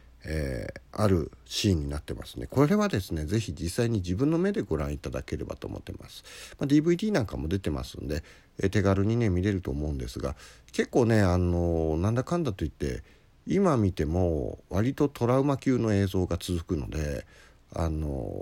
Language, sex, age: Japanese, male, 50-69